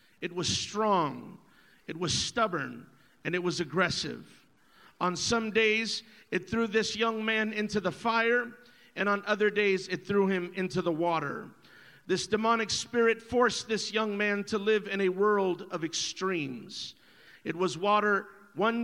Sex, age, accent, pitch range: male, 50-69, American, 190-230 Hz